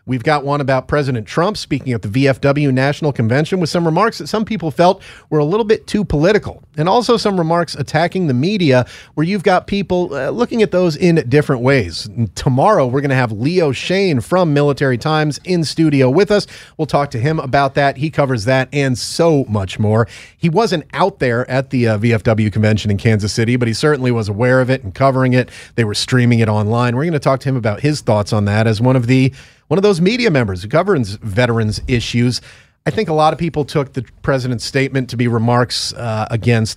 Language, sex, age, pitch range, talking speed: English, male, 30-49, 115-155 Hz, 220 wpm